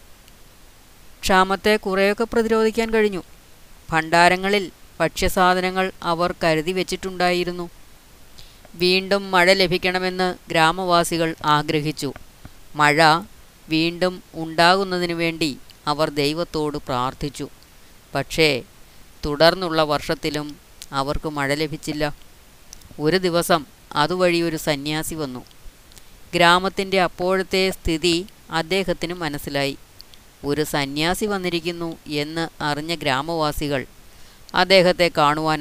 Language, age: Malayalam, 20-39